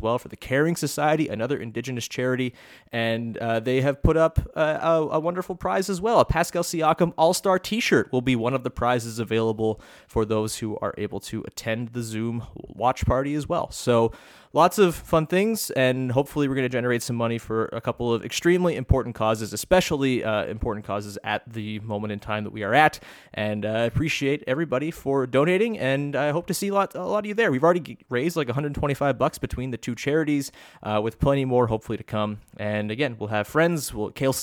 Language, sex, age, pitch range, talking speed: English, male, 30-49, 110-145 Hz, 210 wpm